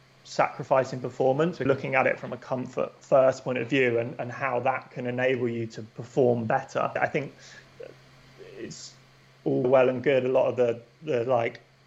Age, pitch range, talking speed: 20-39, 120-130 Hz, 175 wpm